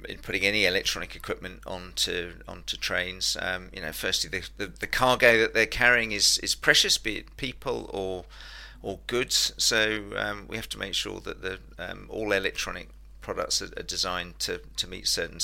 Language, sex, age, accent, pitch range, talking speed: English, male, 40-59, British, 90-115 Hz, 185 wpm